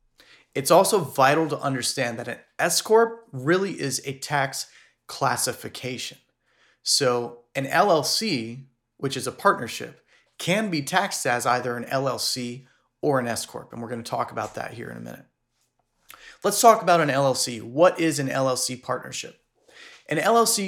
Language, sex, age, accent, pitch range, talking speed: English, male, 30-49, American, 120-150 Hz, 160 wpm